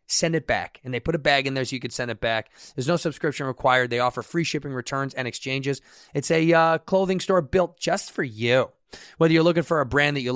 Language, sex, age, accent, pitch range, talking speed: English, male, 30-49, American, 125-160 Hz, 255 wpm